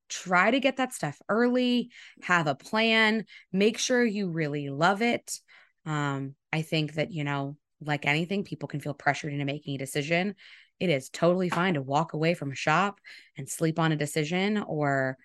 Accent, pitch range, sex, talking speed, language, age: American, 150-195 Hz, female, 185 wpm, English, 20-39